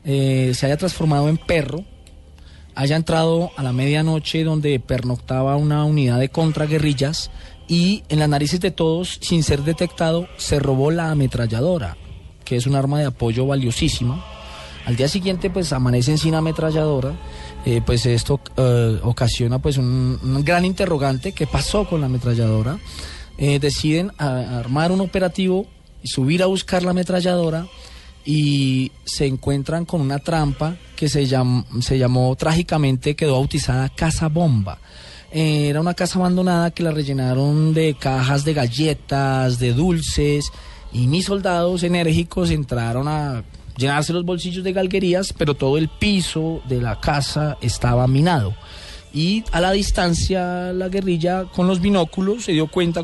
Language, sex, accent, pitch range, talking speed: English, male, Colombian, 125-170 Hz, 150 wpm